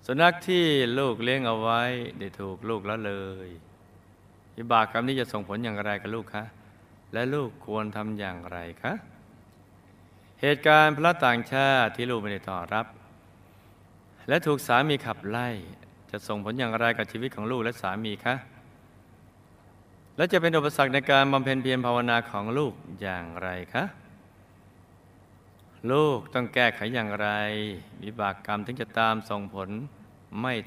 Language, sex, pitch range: Thai, male, 95-120 Hz